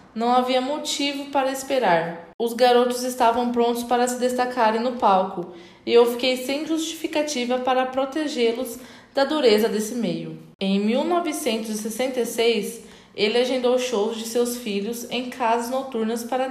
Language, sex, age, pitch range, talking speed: Portuguese, female, 20-39, 215-250 Hz, 135 wpm